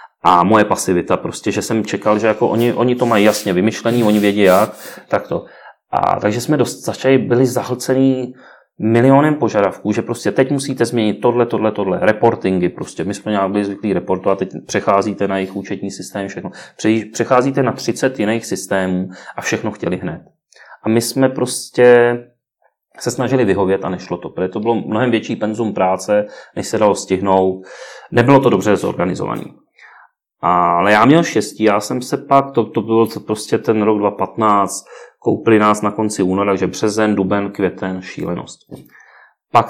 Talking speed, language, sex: 170 wpm, Czech, male